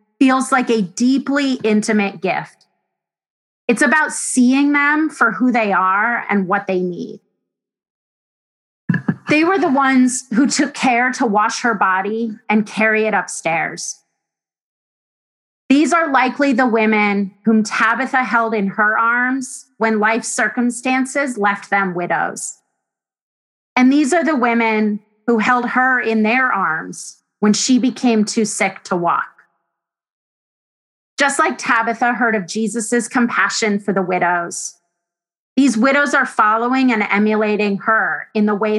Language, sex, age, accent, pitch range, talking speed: English, female, 30-49, American, 210-255 Hz, 135 wpm